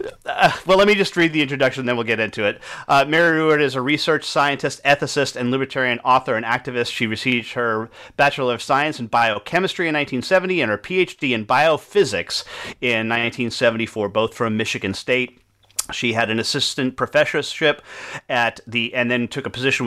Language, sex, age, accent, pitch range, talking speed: English, male, 40-59, American, 115-140 Hz, 180 wpm